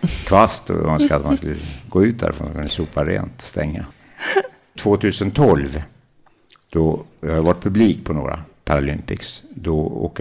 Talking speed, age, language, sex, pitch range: 155 wpm, 60-79, Swedish, male, 75-100 Hz